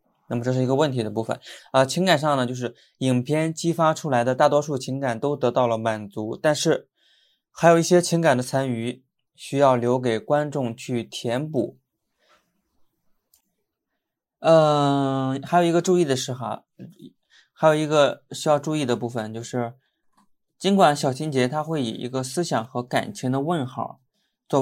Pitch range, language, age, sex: 120-155 Hz, Chinese, 20-39, male